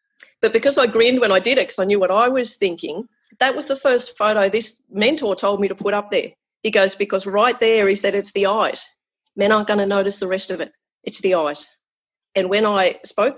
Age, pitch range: 40-59, 190-230 Hz